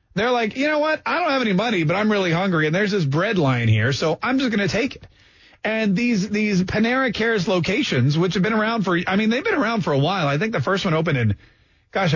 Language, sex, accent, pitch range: English, male, American, 145-210 Hz